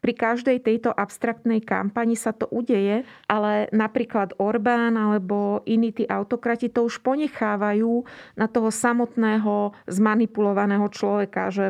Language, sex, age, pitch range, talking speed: Slovak, female, 30-49, 195-225 Hz, 125 wpm